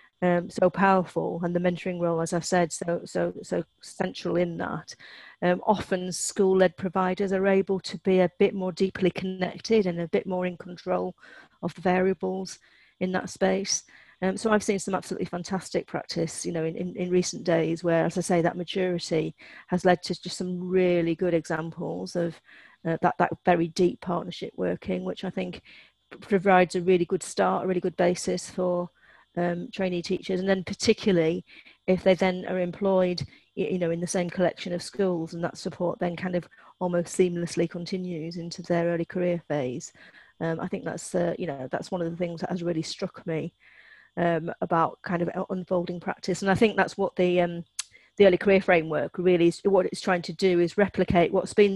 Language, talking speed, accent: English, 195 wpm, British